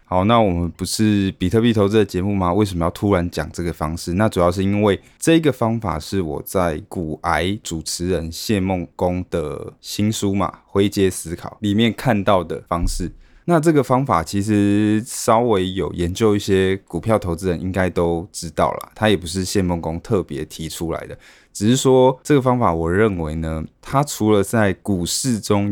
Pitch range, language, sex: 85-105 Hz, Chinese, male